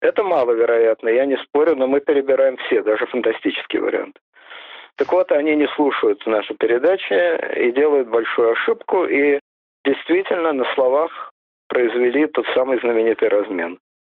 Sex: male